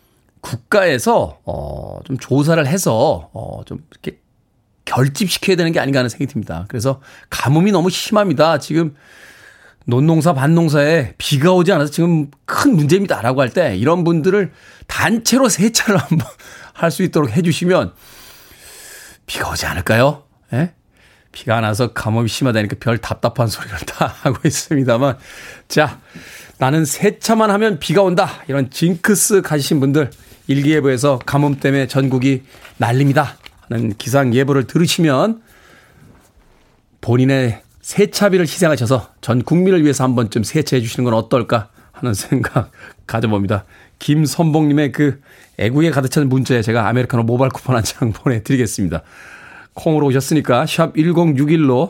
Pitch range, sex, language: 120-165 Hz, male, Korean